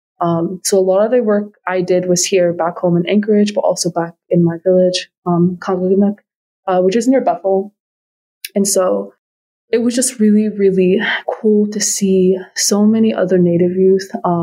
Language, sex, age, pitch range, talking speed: English, female, 20-39, 175-205 Hz, 175 wpm